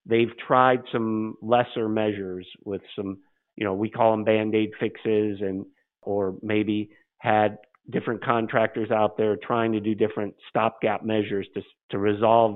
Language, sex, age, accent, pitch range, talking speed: English, male, 50-69, American, 105-115 Hz, 150 wpm